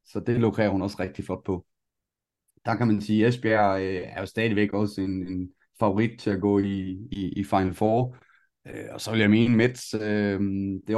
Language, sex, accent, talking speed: Danish, male, native, 210 wpm